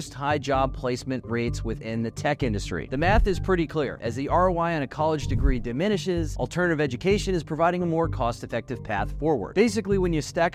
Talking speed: 195 wpm